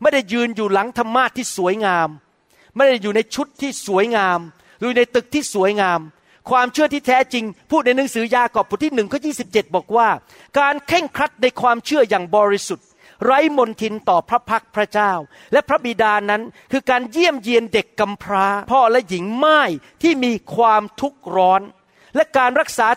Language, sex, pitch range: Thai, male, 210-270 Hz